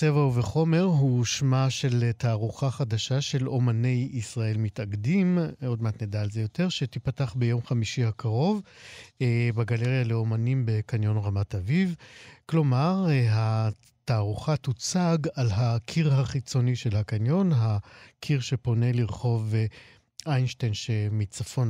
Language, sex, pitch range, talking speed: Hebrew, male, 110-130 Hz, 110 wpm